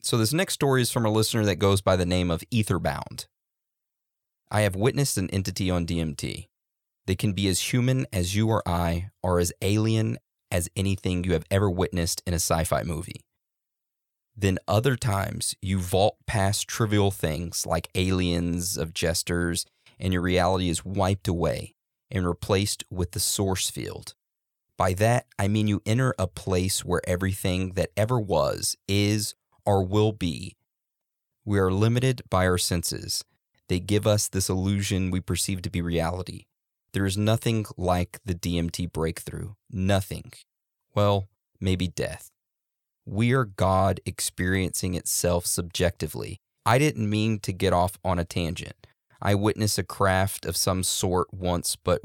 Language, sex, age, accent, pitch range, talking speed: English, male, 30-49, American, 90-105 Hz, 160 wpm